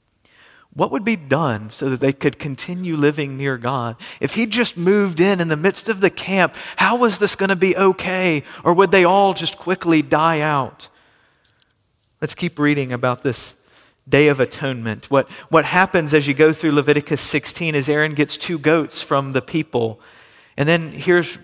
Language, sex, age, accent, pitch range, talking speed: English, male, 40-59, American, 140-180 Hz, 185 wpm